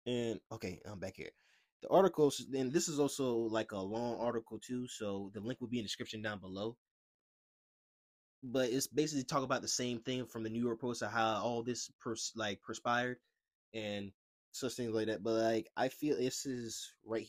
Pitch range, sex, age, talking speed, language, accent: 105-135 Hz, male, 20-39, 200 wpm, English, American